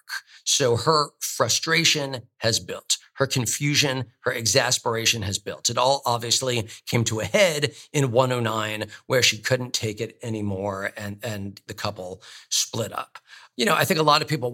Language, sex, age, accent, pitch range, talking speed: English, male, 40-59, American, 115-130 Hz, 165 wpm